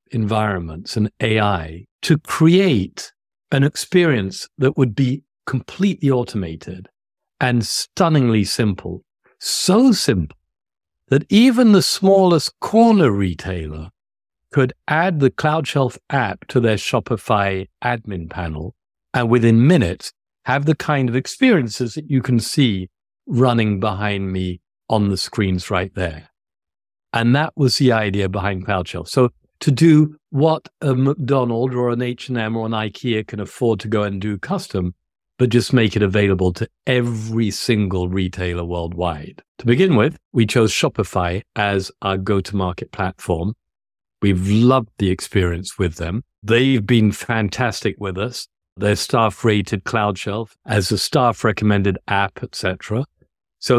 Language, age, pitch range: English, 50-69, 95-130 Hz